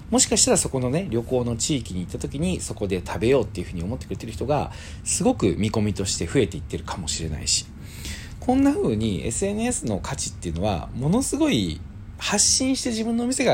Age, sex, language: 40-59, male, Japanese